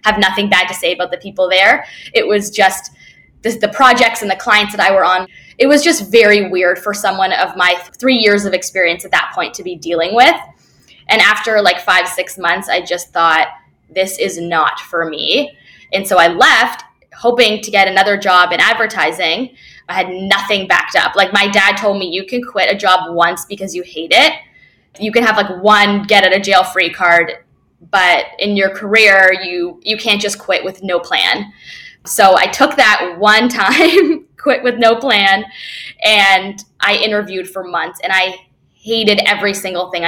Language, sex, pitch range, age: English, female, 185-240 Hz, 10-29